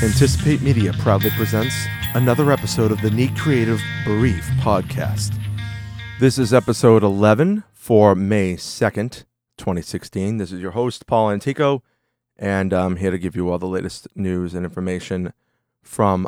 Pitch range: 95-115 Hz